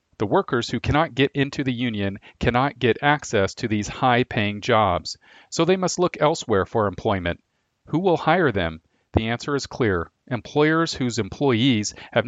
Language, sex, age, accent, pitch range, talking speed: English, male, 40-59, American, 110-140 Hz, 165 wpm